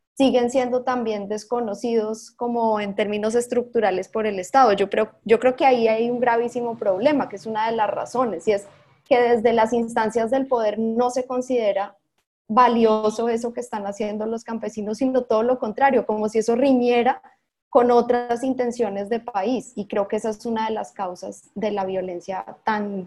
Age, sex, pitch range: 20-39, female, 205-240 Hz